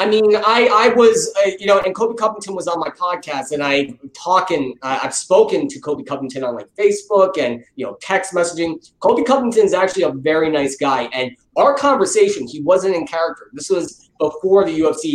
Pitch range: 165-250 Hz